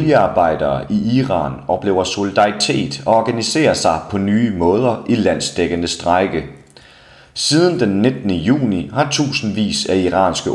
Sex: male